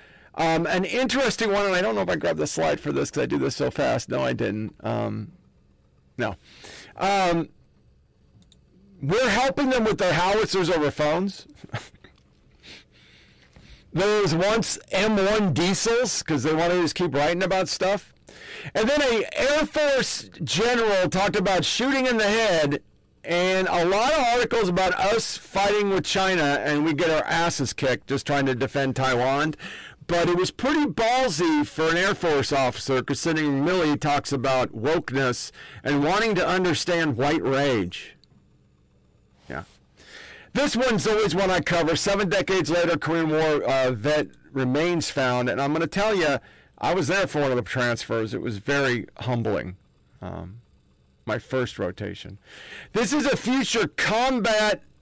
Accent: American